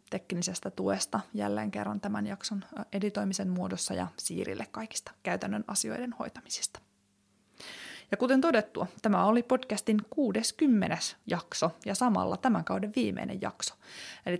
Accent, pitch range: native, 170-220 Hz